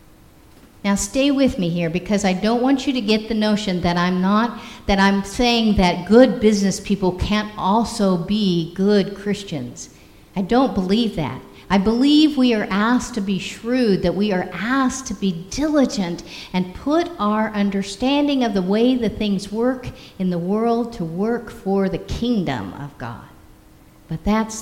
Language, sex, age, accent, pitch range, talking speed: English, female, 50-69, American, 185-250 Hz, 170 wpm